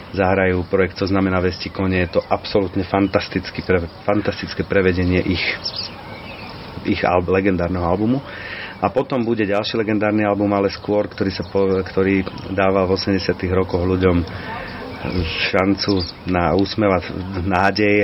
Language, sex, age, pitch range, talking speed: Slovak, male, 40-59, 90-100 Hz, 110 wpm